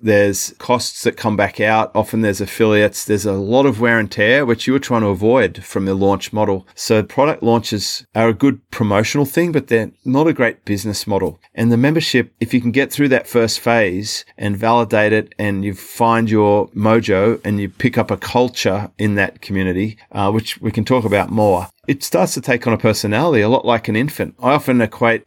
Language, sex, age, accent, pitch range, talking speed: English, male, 30-49, Australian, 105-125 Hz, 215 wpm